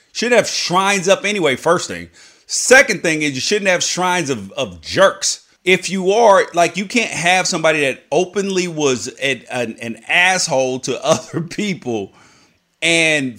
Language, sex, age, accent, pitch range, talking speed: English, male, 30-49, American, 135-190 Hz, 155 wpm